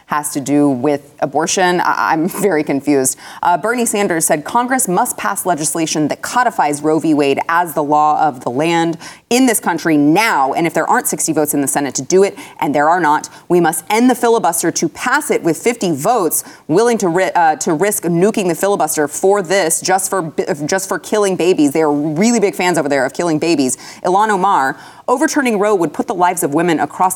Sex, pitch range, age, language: female, 150-185 Hz, 30-49, English